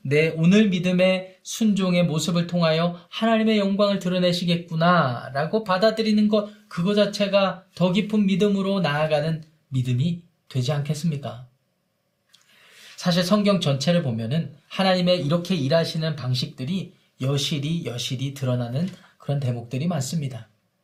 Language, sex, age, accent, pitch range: Korean, male, 20-39, native, 150-200 Hz